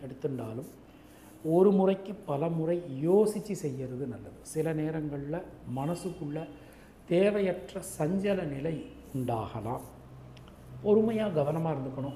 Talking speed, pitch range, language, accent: 55 wpm, 125-180 Hz, English, Indian